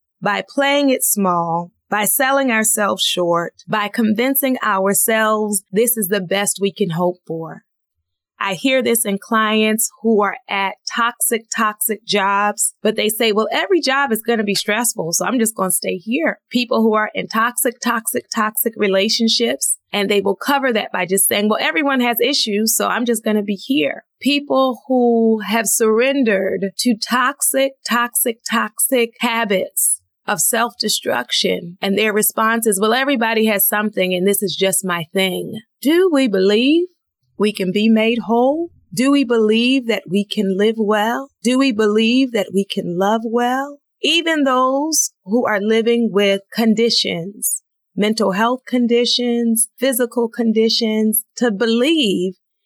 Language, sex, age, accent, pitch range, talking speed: English, female, 20-39, American, 200-245 Hz, 155 wpm